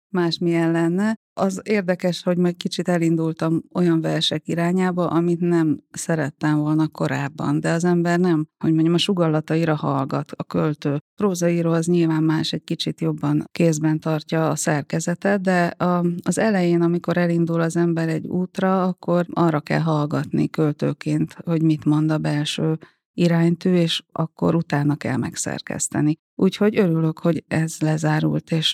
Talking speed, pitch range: 150 wpm, 160-180 Hz